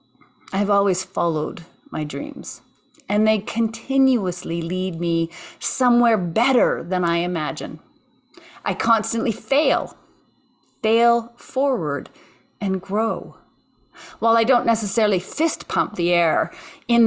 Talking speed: 110 wpm